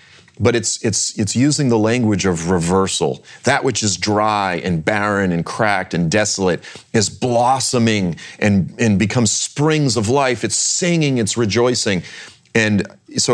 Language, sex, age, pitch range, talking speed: English, male, 30-49, 85-110 Hz, 150 wpm